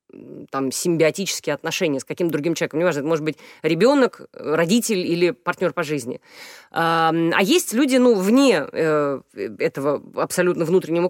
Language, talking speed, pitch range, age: Russian, 140 wpm, 165-235 Hz, 30-49